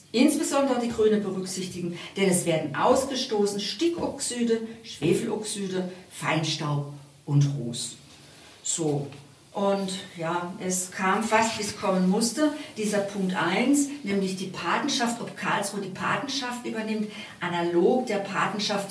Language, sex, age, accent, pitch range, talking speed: German, female, 50-69, German, 165-215 Hz, 115 wpm